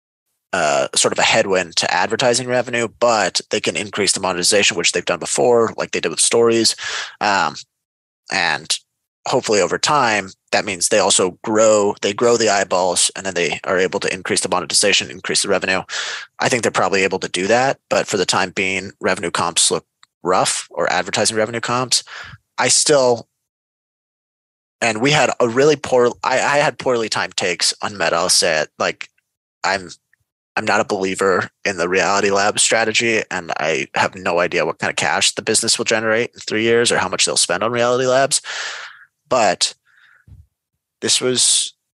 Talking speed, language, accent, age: 180 wpm, English, American, 20-39